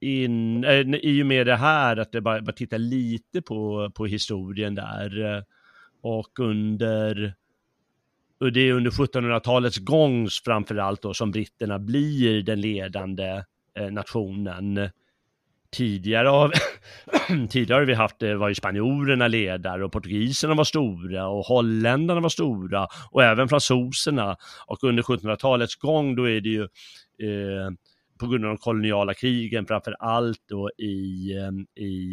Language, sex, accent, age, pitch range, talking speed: Swedish, male, native, 30-49, 100-125 Hz, 135 wpm